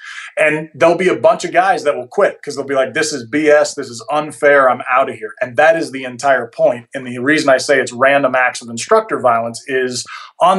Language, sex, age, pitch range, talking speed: English, male, 30-49, 130-155 Hz, 245 wpm